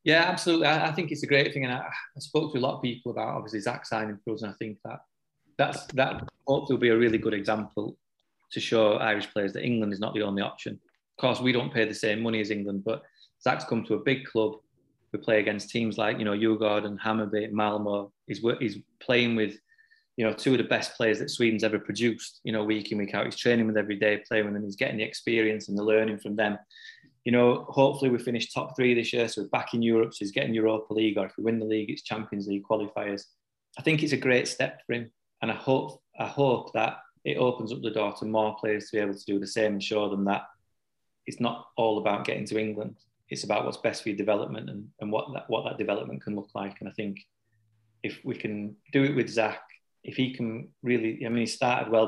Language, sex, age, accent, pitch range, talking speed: English, male, 20-39, British, 105-120 Hz, 250 wpm